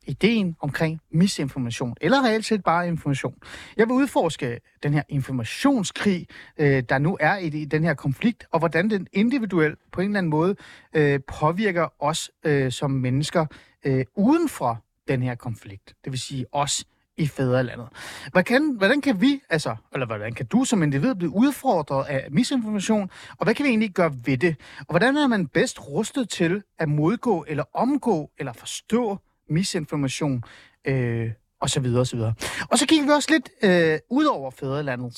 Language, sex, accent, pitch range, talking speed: Danish, male, native, 135-215 Hz, 165 wpm